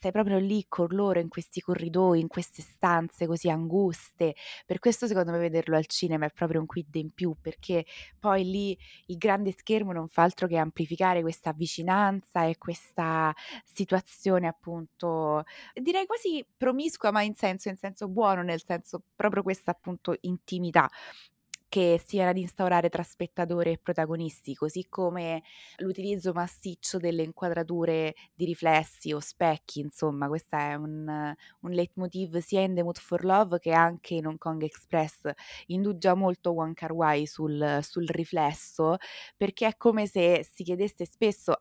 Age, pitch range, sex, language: 20-39, 165-195 Hz, female, Italian